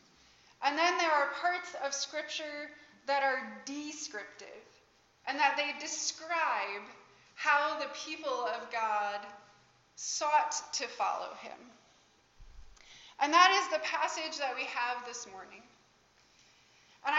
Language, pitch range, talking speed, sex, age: English, 260-310 Hz, 120 wpm, female, 20-39